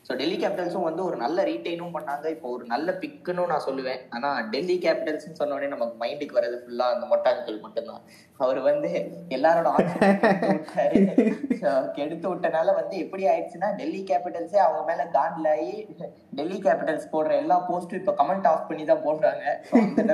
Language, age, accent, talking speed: Tamil, 20-39, native, 145 wpm